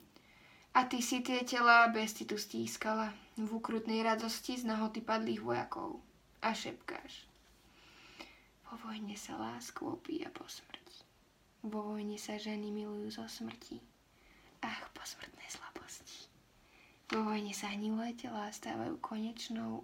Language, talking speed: Slovak, 125 wpm